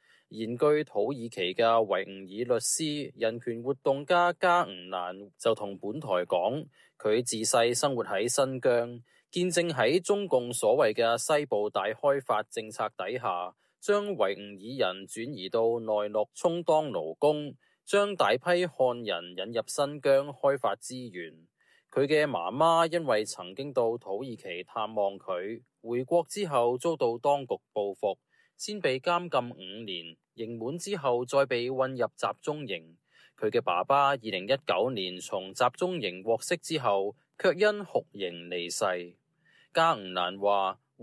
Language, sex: Chinese, male